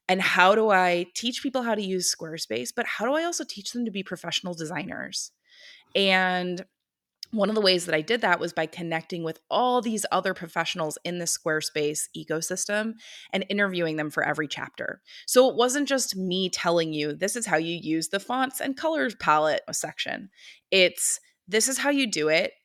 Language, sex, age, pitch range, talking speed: English, female, 20-39, 160-220 Hz, 195 wpm